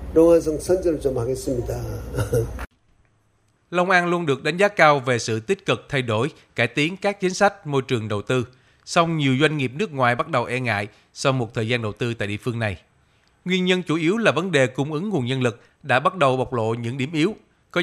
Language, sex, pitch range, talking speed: Vietnamese, male, 120-155 Hz, 210 wpm